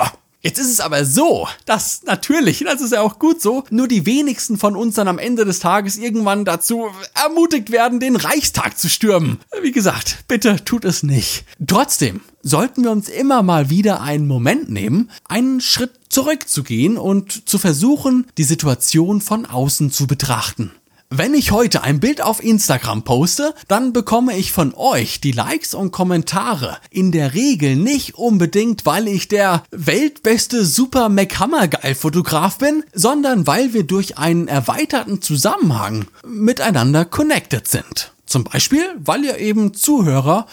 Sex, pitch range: male, 165-250 Hz